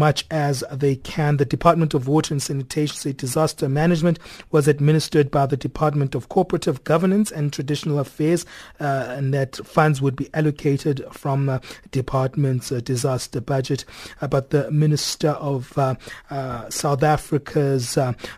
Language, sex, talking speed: English, male, 155 wpm